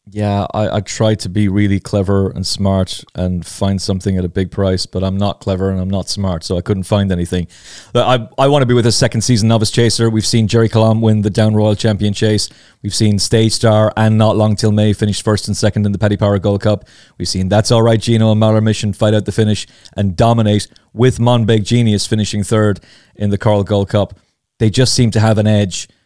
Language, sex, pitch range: English, male, 100-115 Hz